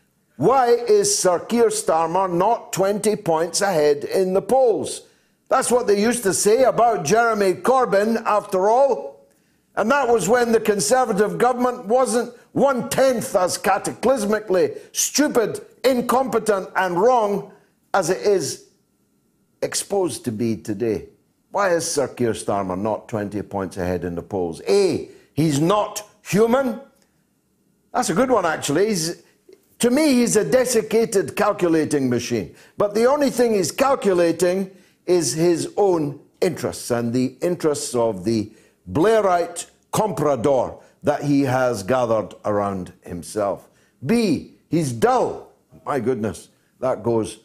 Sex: male